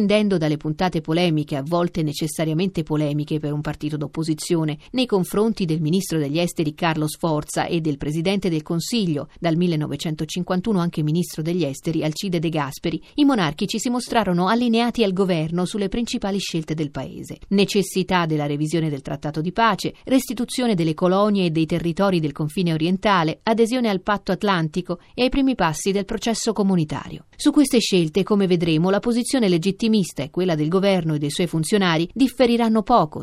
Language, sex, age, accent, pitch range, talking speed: Italian, female, 40-59, native, 160-205 Hz, 165 wpm